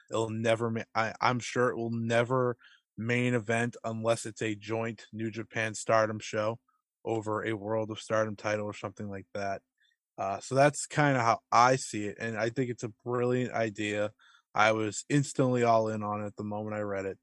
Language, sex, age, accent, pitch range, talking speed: English, male, 20-39, American, 105-125 Hz, 190 wpm